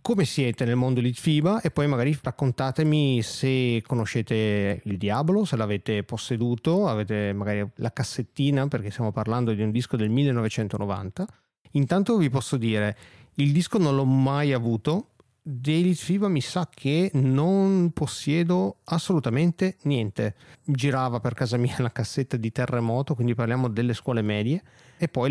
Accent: native